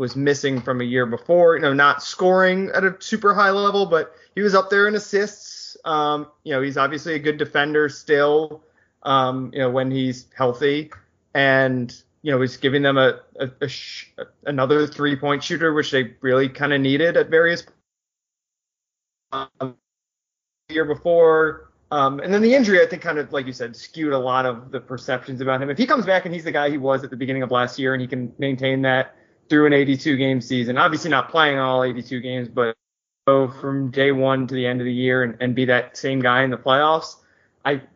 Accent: American